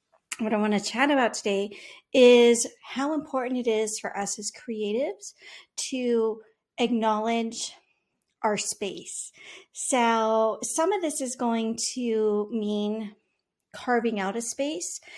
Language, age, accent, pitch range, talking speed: English, 40-59, American, 210-255 Hz, 125 wpm